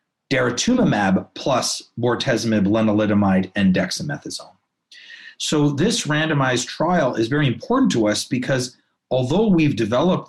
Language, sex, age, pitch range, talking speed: English, male, 40-59, 115-175 Hz, 110 wpm